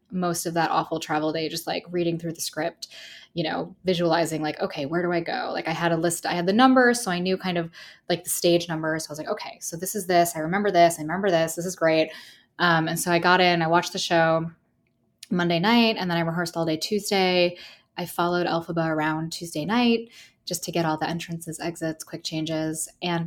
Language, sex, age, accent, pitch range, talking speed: English, female, 10-29, American, 165-200 Hz, 235 wpm